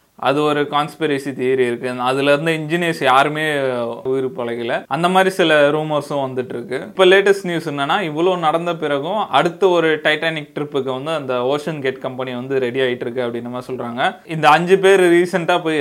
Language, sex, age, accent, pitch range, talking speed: Tamil, male, 20-39, native, 130-160 Hz, 165 wpm